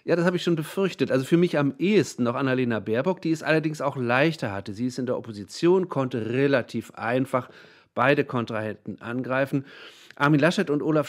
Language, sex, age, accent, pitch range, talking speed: German, male, 40-59, German, 115-145 Hz, 190 wpm